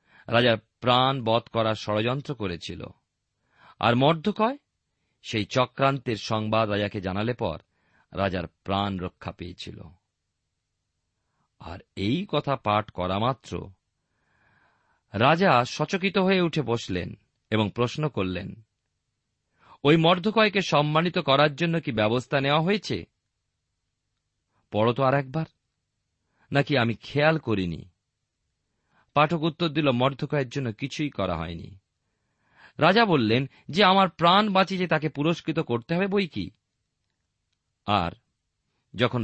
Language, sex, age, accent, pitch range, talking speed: Bengali, male, 40-59, native, 100-150 Hz, 80 wpm